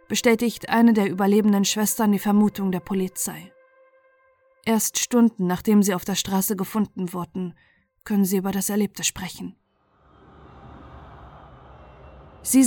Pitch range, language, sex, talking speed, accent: 190-240 Hz, German, female, 120 wpm, German